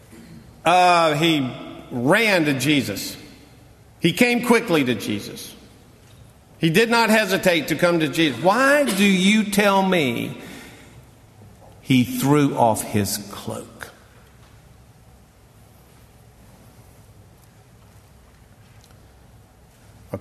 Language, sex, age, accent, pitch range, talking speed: English, male, 50-69, American, 115-175 Hz, 85 wpm